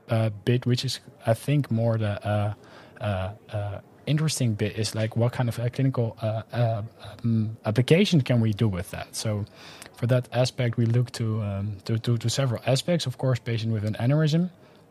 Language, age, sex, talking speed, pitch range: English, 20-39, male, 195 wpm, 110-130 Hz